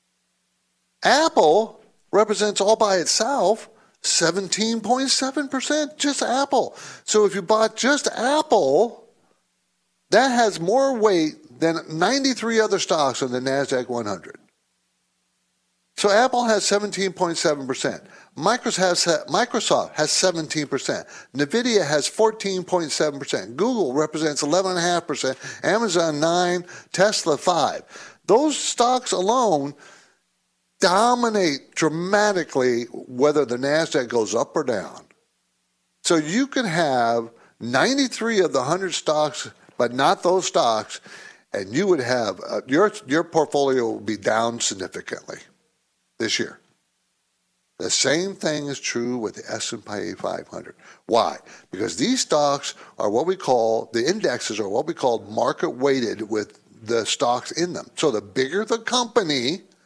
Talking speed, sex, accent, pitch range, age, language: 120 wpm, male, American, 145-230 Hz, 50-69, English